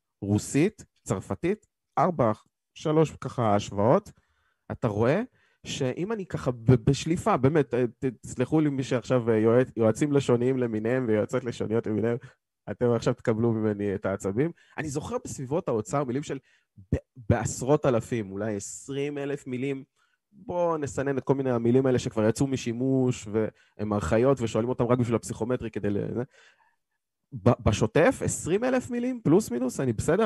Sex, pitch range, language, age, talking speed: male, 110-140 Hz, Hebrew, 20-39, 140 wpm